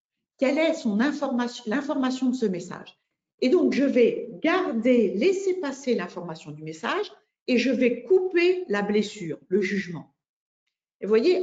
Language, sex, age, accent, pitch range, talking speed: French, female, 50-69, French, 190-270 Hz, 145 wpm